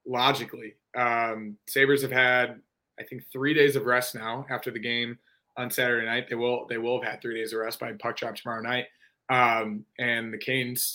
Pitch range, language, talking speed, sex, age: 115-135 Hz, English, 205 wpm, male, 20-39